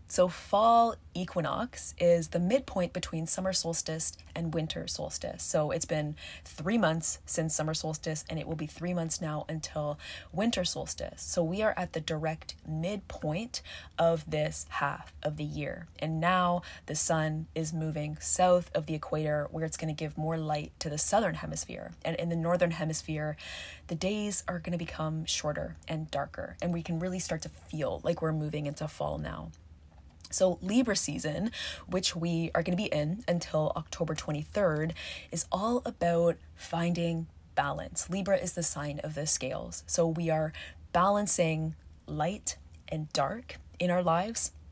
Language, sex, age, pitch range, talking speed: English, female, 20-39, 150-175 Hz, 170 wpm